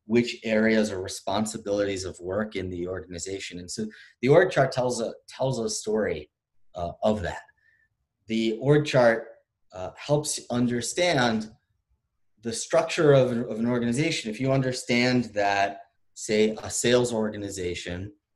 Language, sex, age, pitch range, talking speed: English, male, 30-49, 100-120 Hz, 145 wpm